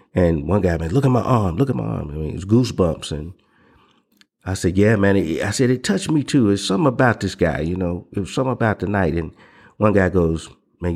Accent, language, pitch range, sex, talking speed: American, English, 85-105 Hz, male, 250 wpm